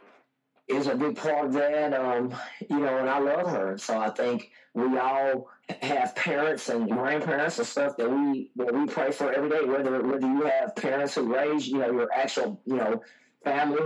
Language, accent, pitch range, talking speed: English, American, 130-155 Hz, 200 wpm